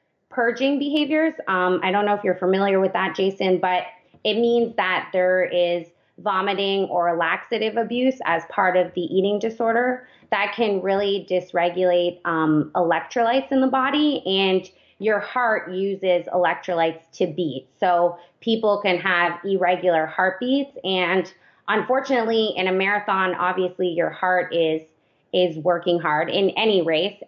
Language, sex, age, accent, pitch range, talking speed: English, female, 20-39, American, 175-210 Hz, 145 wpm